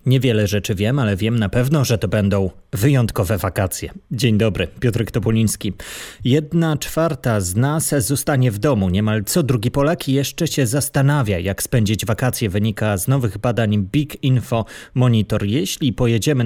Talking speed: 155 wpm